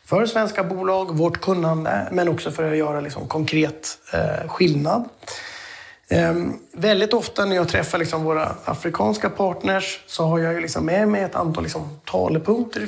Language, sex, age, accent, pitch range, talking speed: Swedish, male, 30-49, native, 160-195 Hz, 165 wpm